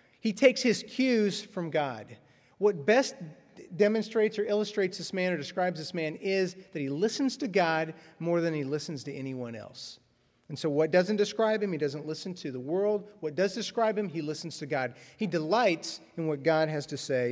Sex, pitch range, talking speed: male, 140-190 Hz, 200 wpm